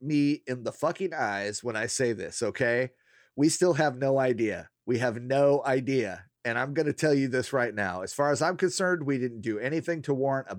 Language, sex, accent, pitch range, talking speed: English, male, American, 120-160 Hz, 225 wpm